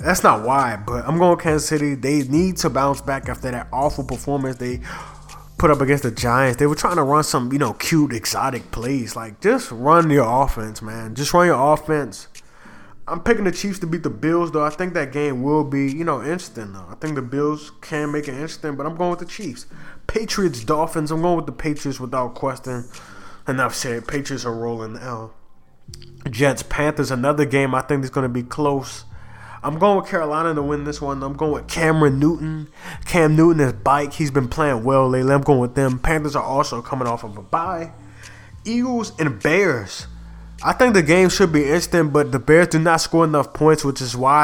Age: 20-39